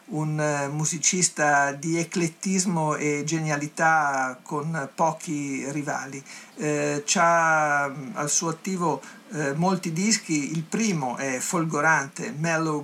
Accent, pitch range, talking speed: native, 145-180 Hz, 105 wpm